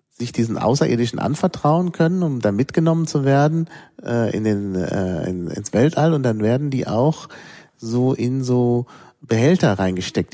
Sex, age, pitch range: male, 40-59, 95-125 Hz